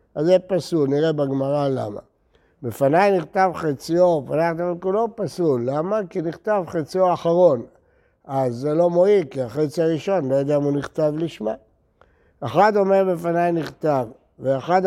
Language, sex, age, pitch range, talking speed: Hebrew, male, 60-79, 145-195 Hz, 140 wpm